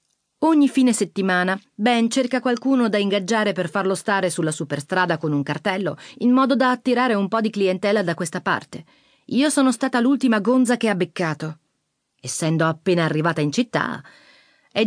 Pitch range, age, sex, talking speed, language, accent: 170-240 Hz, 30-49, female, 165 wpm, Italian, native